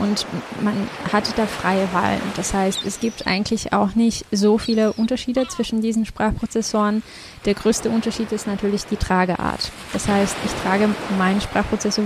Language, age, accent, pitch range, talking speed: German, 20-39, German, 200-225 Hz, 160 wpm